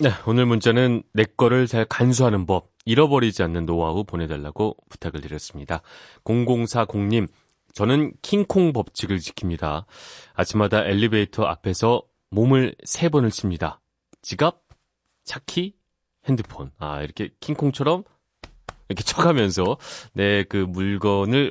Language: Korean